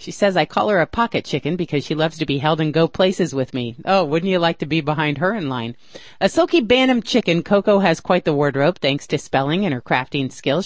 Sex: female